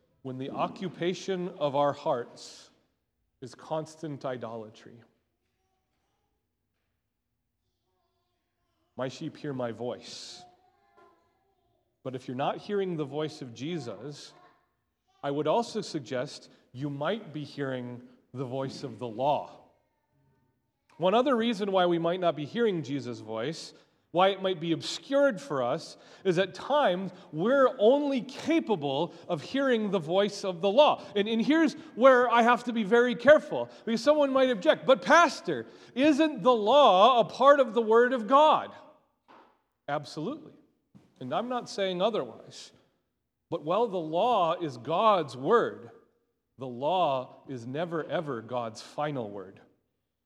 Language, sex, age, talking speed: English, male, 30-49, 135 wpm